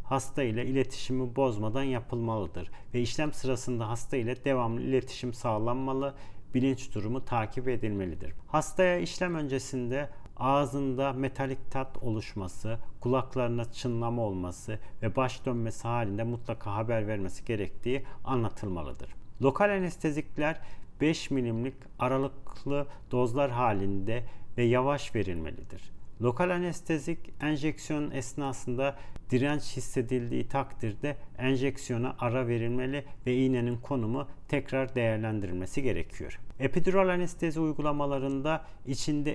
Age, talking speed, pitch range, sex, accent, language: 40-59, 100 wpm, 115-140 Hz, male, native, Turkish